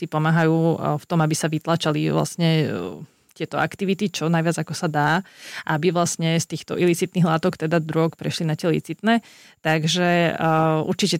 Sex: female